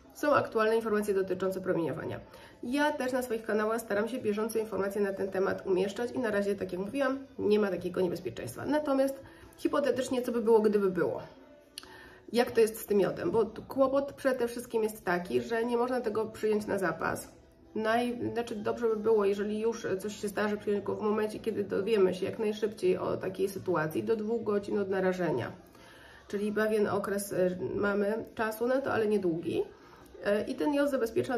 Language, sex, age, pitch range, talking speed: Polish, female, 30-49, 190-230 Hz, 180 wpm